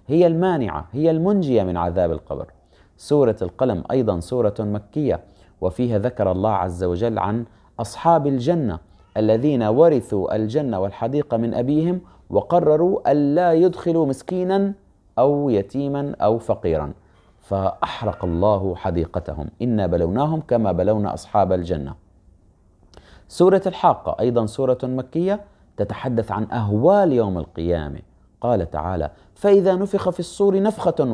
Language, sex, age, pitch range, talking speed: Arabic, male, 30-49, 95-160 Hz, 115 wpm